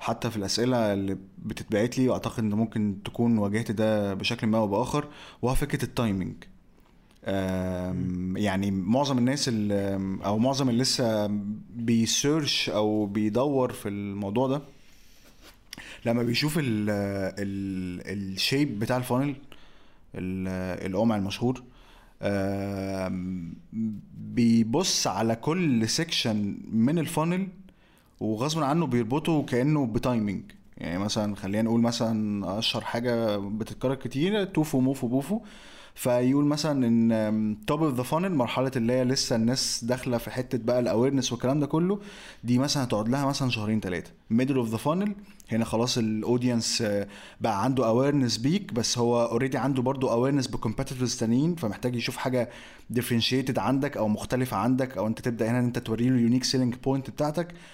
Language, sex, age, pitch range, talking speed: Arabic, male, 20-39, 105-130 Hz, 135 wpm